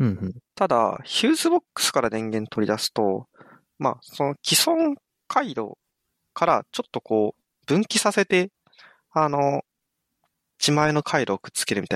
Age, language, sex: 20-39, Japanese, male